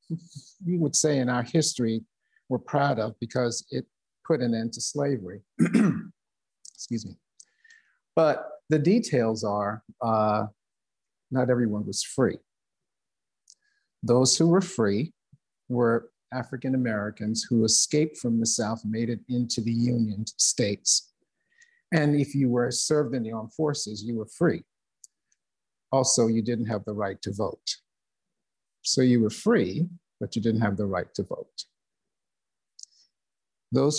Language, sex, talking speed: English, male, 135 wpm